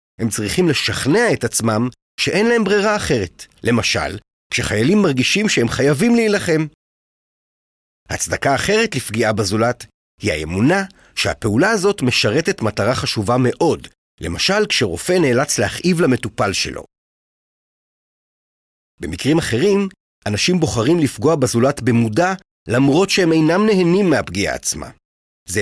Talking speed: 110 wpm